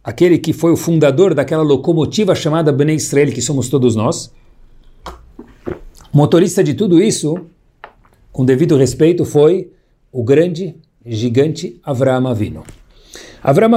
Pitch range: 140-190 Hz